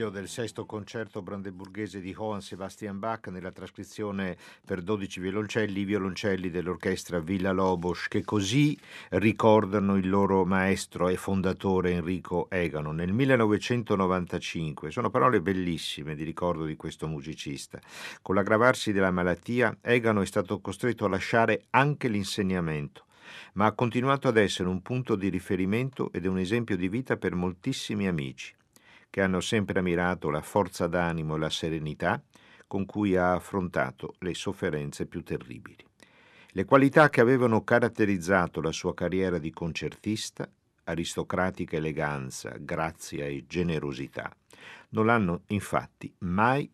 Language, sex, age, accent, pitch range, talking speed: Italian, male, 50-69, native, 80-105 Hz, 135 wpm